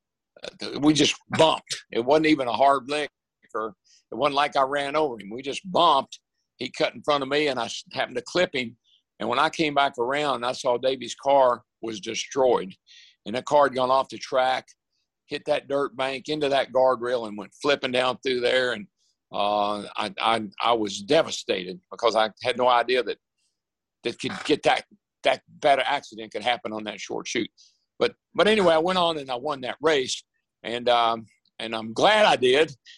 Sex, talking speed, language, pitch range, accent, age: male, 200 wpm, English, 115-150 Hz, American, 60-79